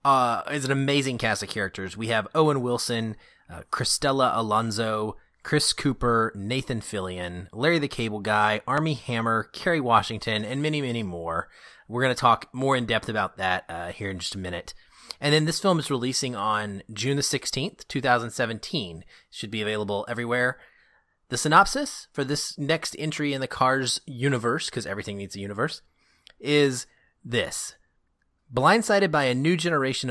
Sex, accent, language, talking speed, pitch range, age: male, American, English, 165 wpm, 105-145 Hz, 30-49